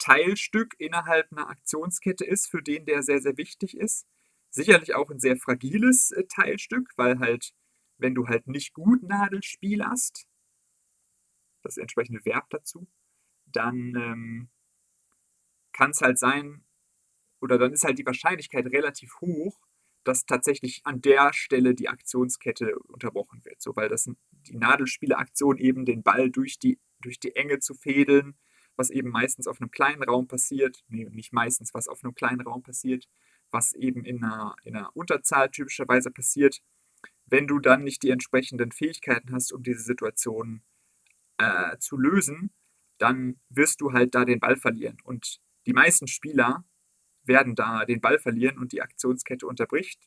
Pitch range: 125-150 Hz